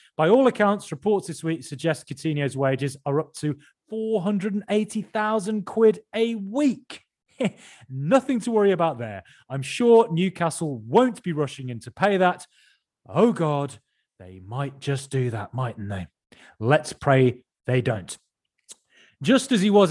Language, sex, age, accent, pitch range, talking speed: English, male, 30-49, British, 130-195 Hz, 145 wpm